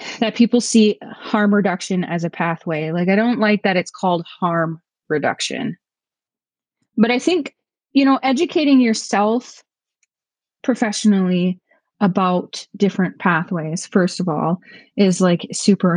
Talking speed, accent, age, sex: 130 wpm, American, 20-39, female